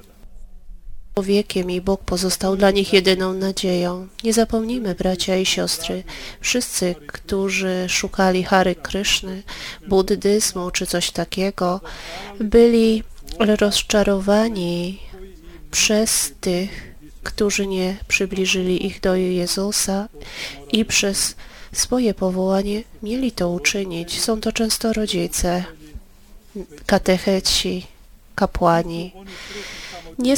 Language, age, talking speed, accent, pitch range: Polish, 30-49, 90 wpm, native, 180-210 Hz